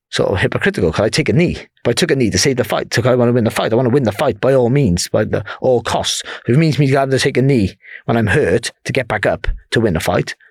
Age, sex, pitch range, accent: 30-49, male, 105-140 Hz, British